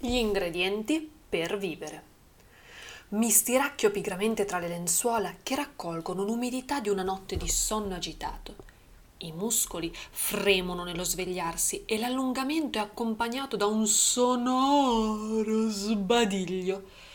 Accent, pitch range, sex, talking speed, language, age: native, 180-245 Hz, female, 110 wpm, Italian, 30-49